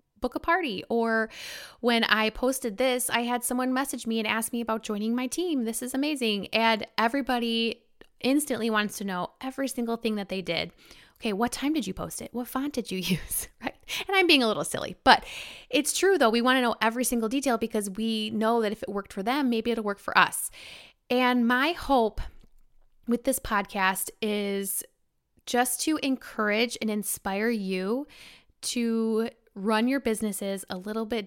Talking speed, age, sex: 190 wpm, 20-39, female